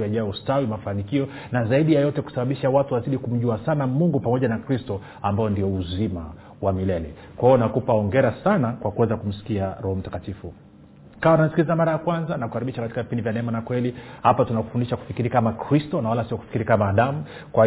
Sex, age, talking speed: male, 40-59, 185 wpm